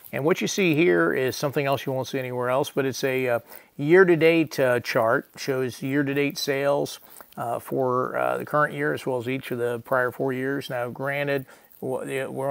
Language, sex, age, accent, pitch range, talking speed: English, male, 40-59, American, 120-140 Hz, 195 wpm